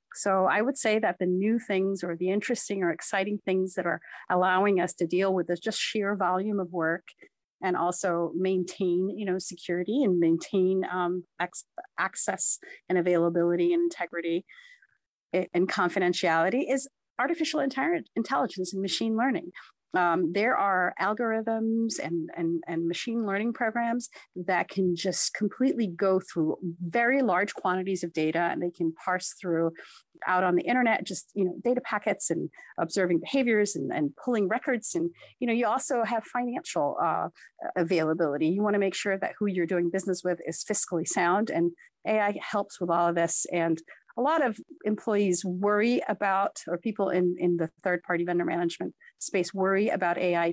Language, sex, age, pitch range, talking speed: English, female, 40-59, 175-220 Hz, 165 wpm